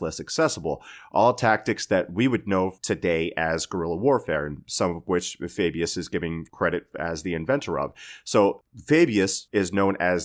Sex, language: male, English